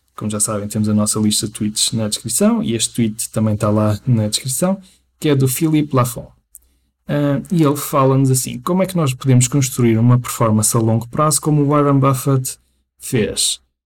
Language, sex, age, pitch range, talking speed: Portuguese, male, 20-39, 110-135 Hz, 195 wpm